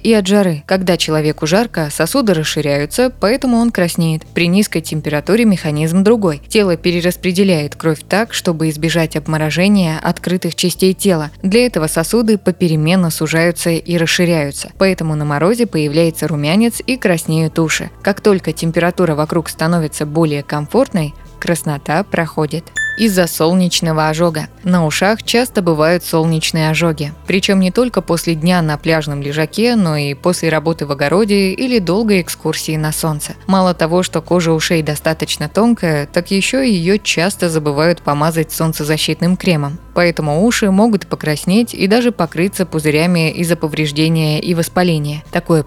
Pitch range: 155-190 Hz